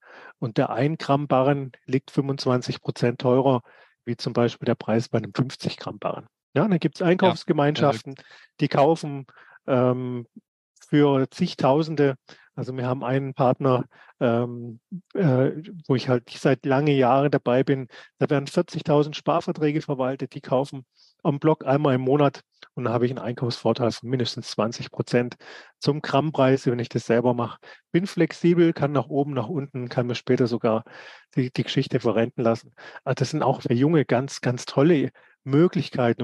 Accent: German